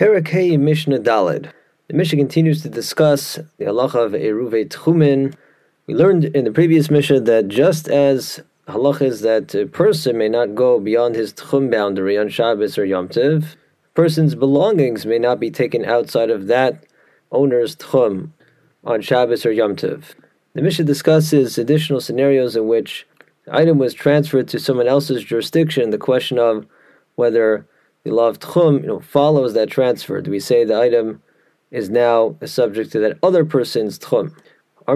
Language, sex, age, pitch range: English, male, 30-49, 120-150 Hz